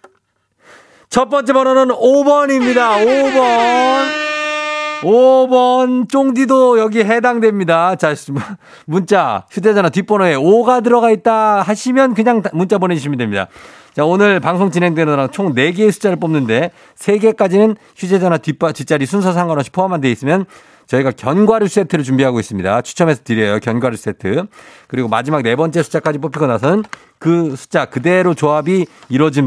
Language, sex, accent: Korean, male, native